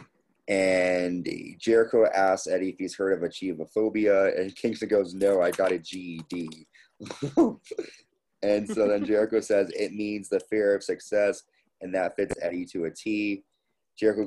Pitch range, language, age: 90-110 Hz, English, 30-49